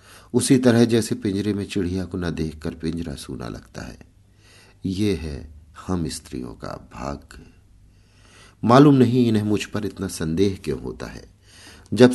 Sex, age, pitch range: male, 50-69, 80-105 Hz